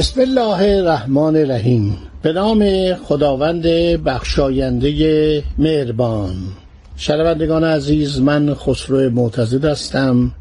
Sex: male